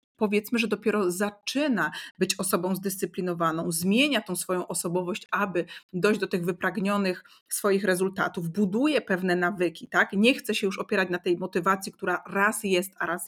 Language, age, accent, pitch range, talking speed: Polish, 30-49, native, 185-225 Hz, 160 wpm